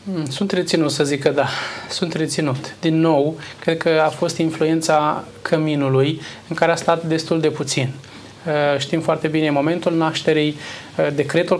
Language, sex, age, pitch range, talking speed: Romanian, male, 20-39, 150-165 Hz, 150 wpm